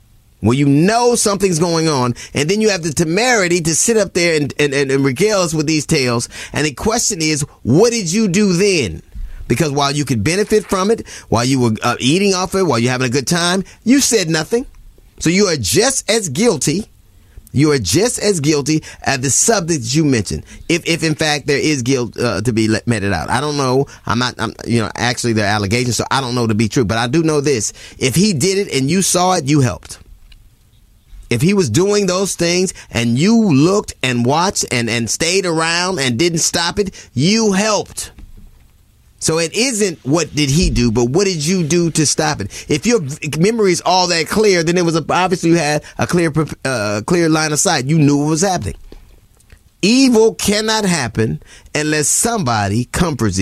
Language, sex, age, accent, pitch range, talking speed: English, male, 30-49, American, 120-180 Hz, 205 wpm